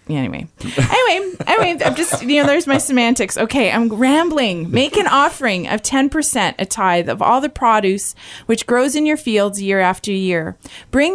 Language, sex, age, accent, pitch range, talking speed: English, female, 30-49, American, 175-240 Hz, 190 wpm